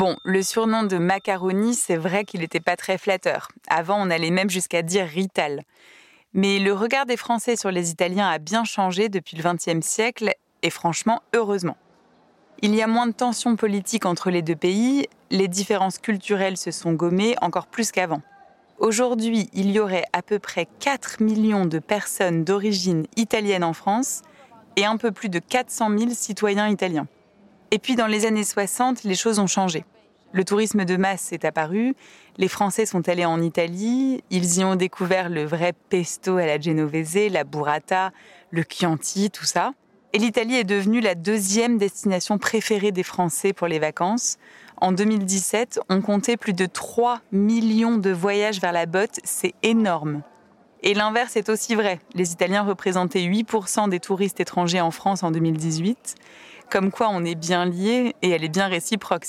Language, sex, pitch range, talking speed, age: French, female, 180-220 Hz, 175 wpm, 20-39